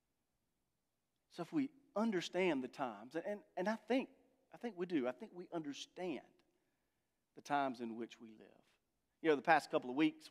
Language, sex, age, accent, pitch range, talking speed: English, male, 40-59, American, 125-170 Hz, 180 wpm